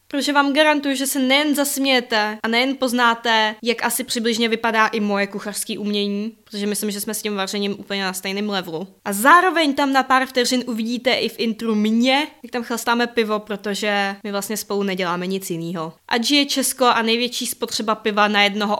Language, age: Czech, 20-39